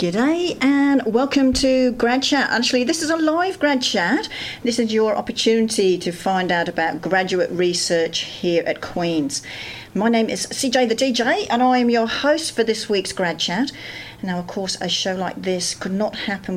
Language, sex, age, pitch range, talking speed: English, female, 50-69, 170-240 Hz, 190 wpm